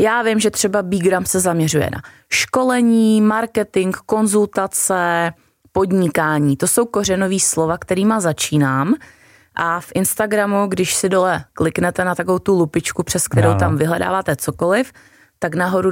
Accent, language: native, Czech